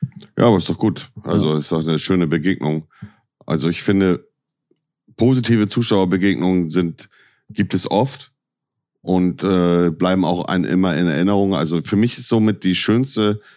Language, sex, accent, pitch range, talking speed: German, male, German, 85-105 Hz, 160 wpm